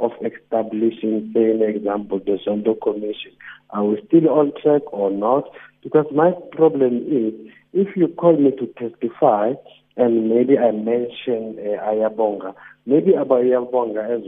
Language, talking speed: English, 145 wpm